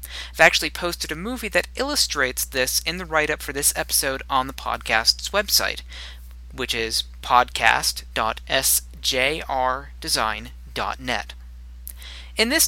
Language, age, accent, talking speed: English, 40-59, American, 110 wpm